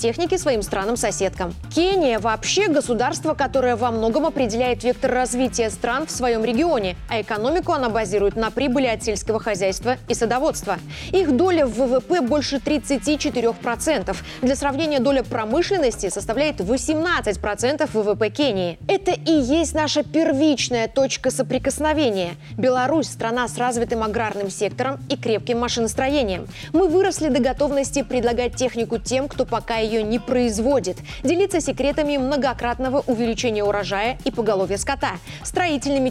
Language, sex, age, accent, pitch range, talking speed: Russian, female, 20-39, native, 225-290 Hz, 130 wpm